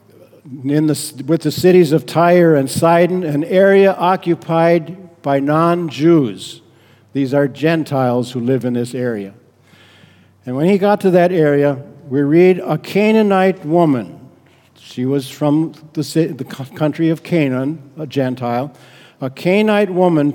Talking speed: 140 wpm